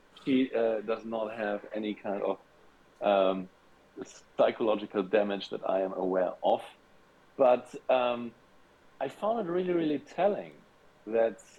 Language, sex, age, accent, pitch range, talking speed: English, male, 50-69, German, 95-115 Hz, 130 wpm